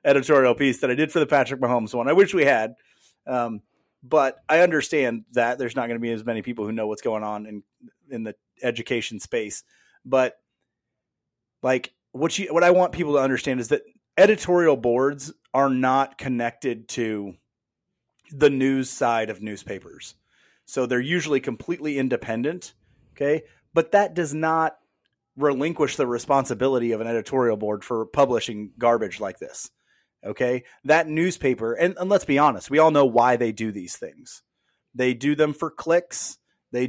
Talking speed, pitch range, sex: 170 wpm, 120-150 Hz, male